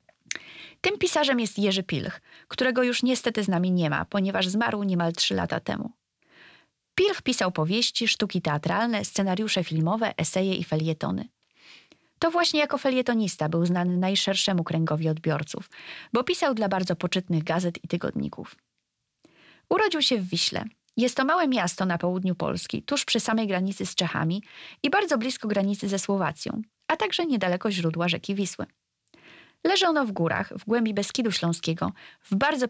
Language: Polish